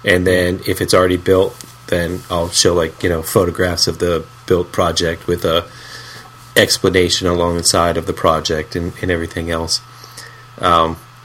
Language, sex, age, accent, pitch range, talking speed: English, male, 30-49, American, 85-110 Hz, 160 wpm